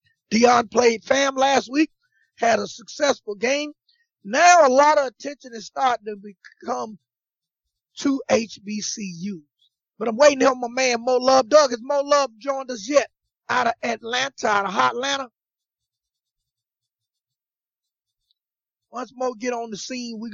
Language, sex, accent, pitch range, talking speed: English, male, American, 180-250 Hz, 140 wpm